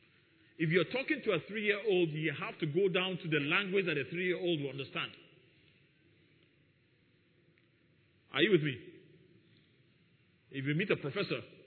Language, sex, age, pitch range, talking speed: English, male, 40-59, 150-180 Hz, 145 wpm